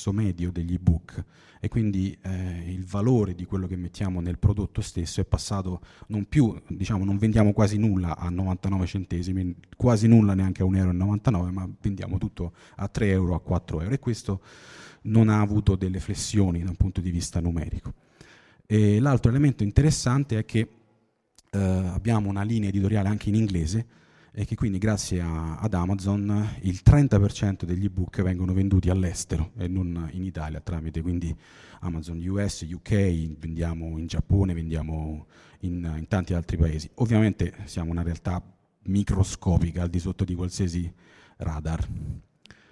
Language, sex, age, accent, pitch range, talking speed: Italian, male, 30-49, native, 85-105 Hz, 155 wpm